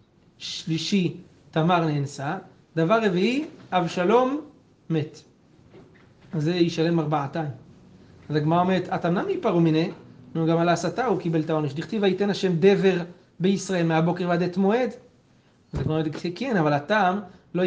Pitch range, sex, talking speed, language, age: 160-195 Hz, male, 120 wpm, Hebrew, 30-49